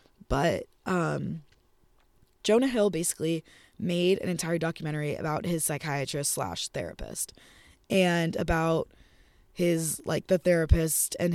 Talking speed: 110 wpm